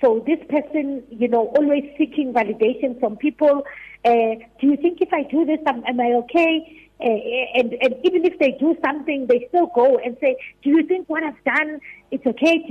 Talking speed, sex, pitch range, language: 210 wpm, female, 255-320 Hz, English